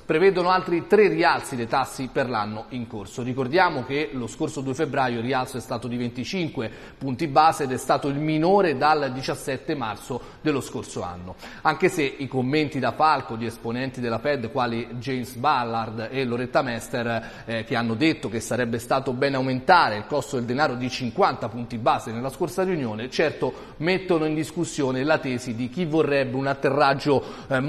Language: Italian